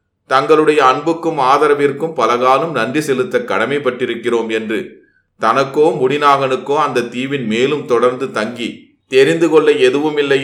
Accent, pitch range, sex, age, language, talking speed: native, 115-145 Hz, male, 30-49, Tamil, 110 wpm